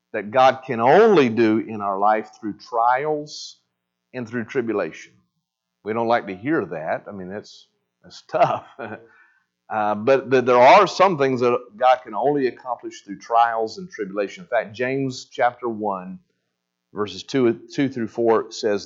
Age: 50-69